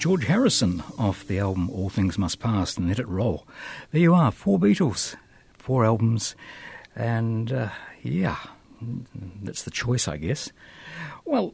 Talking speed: 150 wpm